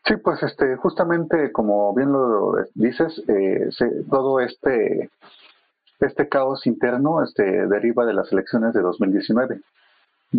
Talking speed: 125 wpm